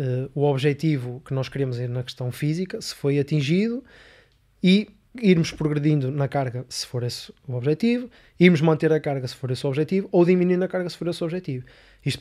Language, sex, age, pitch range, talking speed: Portuguese, male, 20-39, 135-170 Hz, 205 wpm